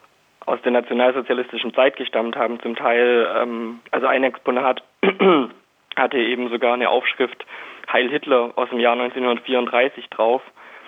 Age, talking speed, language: 20-39, 130 wpm, German